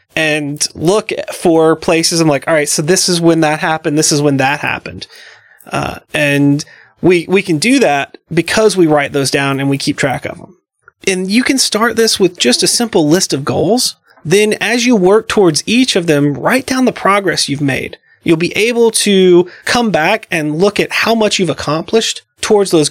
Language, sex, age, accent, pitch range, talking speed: English, male, 30-49, American, 150-195 Hz, 205 wpm